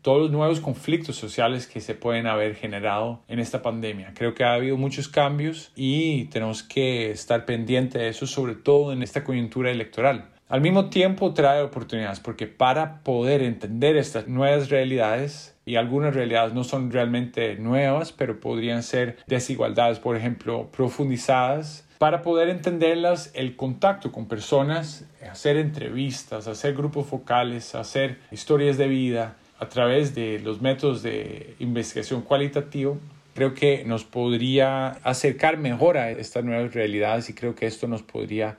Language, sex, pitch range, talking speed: Spanish, male, 115-140 Hz, 150 wpm